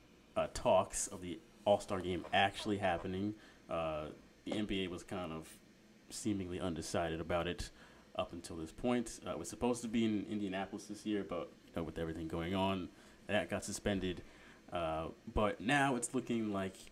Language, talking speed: English, 170 wpm